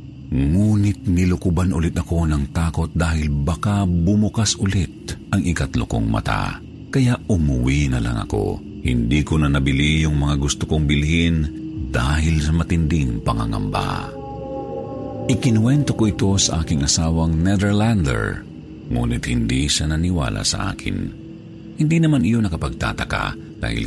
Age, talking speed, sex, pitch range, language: 50-69, 125 wpm, male, 75-105 Hz, Filipino